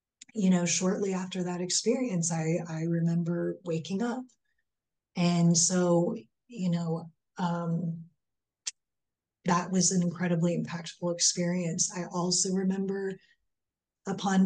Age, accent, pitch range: 30-49, American, 165-190 Hz